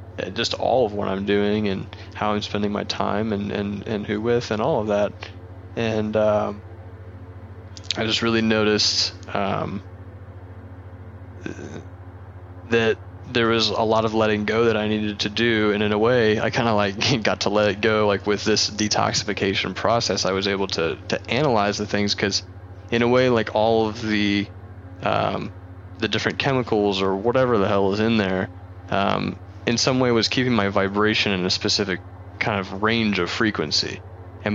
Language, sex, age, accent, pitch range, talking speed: English, male, 20-39, American, 95-110 Hz, 180 wpm